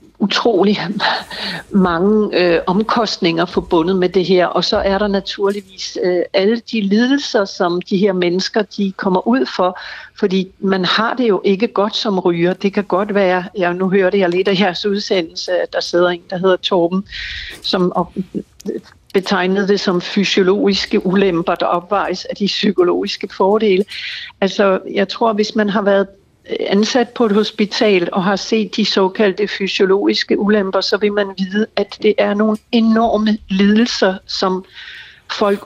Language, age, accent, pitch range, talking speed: Danish, 60-79, native, 190-215 Hz, 160 wpm